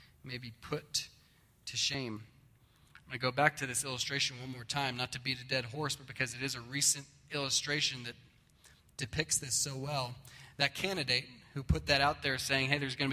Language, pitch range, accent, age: English, 125-145 Hz, American, 20-39